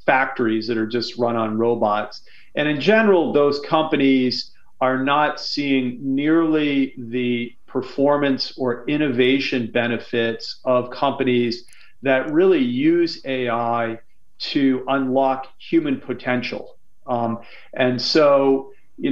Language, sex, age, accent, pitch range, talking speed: English, male, 40-59, American, 120-140 Hz, 110 wpm